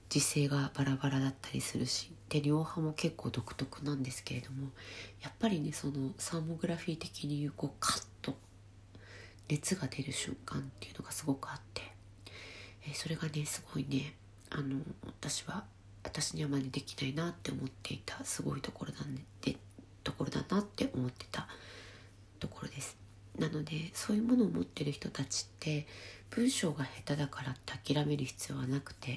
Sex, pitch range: female, 100-150 Hz